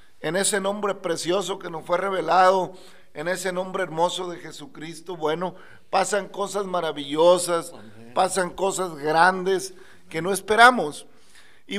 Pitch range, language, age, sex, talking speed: 160-200 Hz, Spanish, 40-59, male, 125 wpm